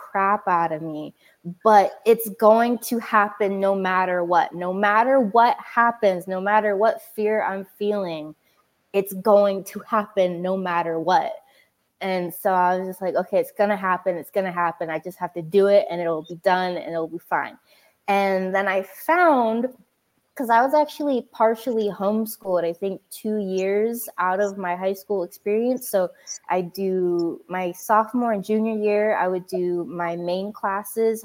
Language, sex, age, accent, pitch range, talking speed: English, female, 20-39, American, 185-235 Hz, 170 wpm